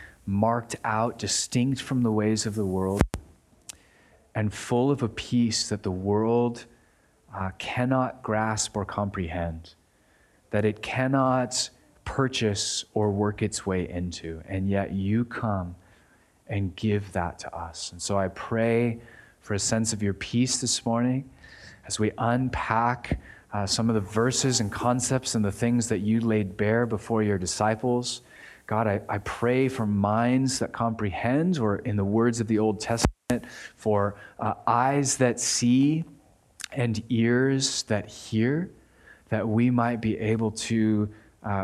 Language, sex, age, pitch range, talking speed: English, male, 30-49, 100-120 Hz, 150 wpm